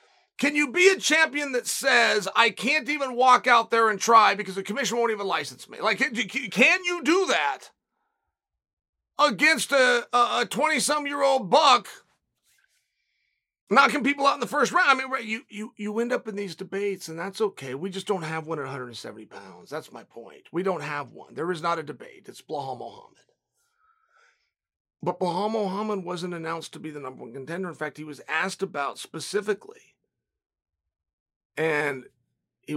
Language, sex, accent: English, male, American